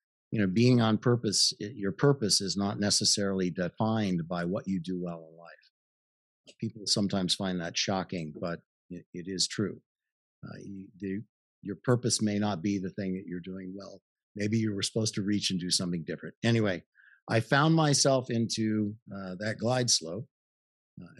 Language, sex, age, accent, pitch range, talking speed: English, male, 50-69, American, 95-120 Hz, 170 wpm